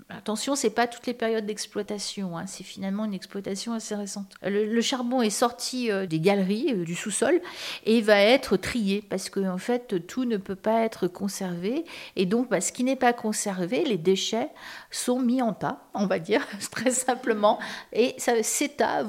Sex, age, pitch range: female, 50-69, 200-250 Hz